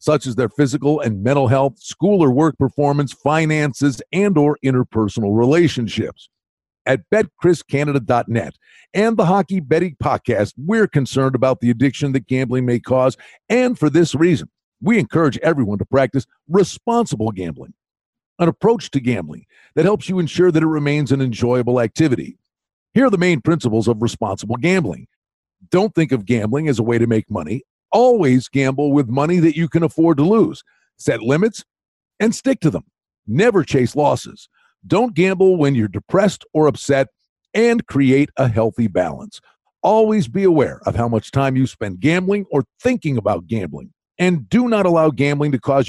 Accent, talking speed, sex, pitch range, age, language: American, 165 wpm, male, 125-175 Hz, 50-69, English